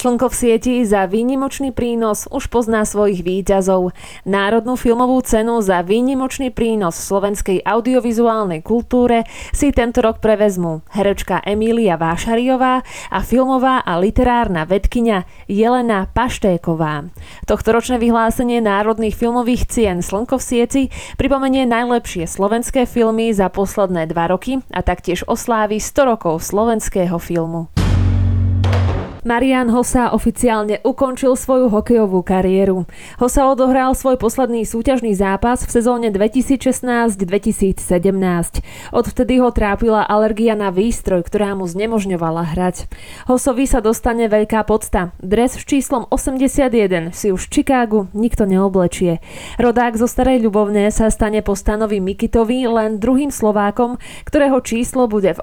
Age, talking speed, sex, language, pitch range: 20-39, 120 wpm, female, Slovak, 195-245 Hz